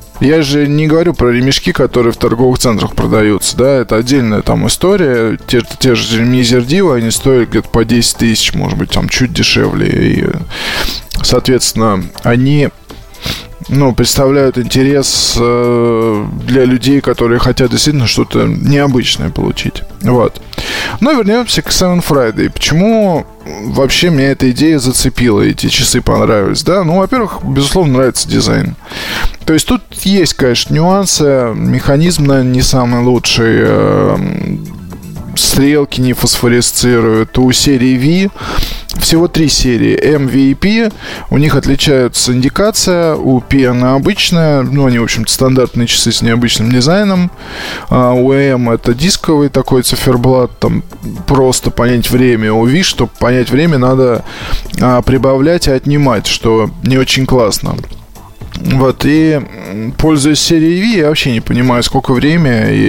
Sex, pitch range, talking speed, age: male, 120-150 Hz, 140 wpm, 20-39